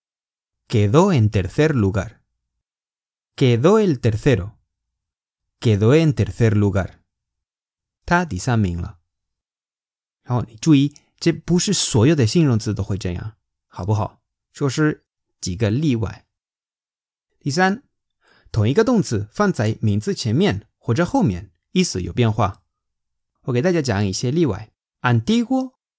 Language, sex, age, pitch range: Chinese, male, 30-49, 100-150 Hz